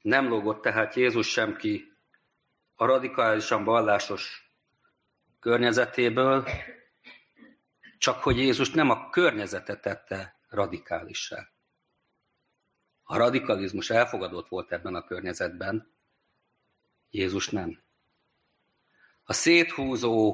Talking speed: 85 wpm